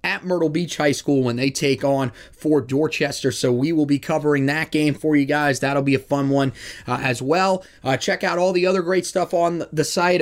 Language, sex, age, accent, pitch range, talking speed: English, male, 20-39, American, 145-175 Hz, 235 wpm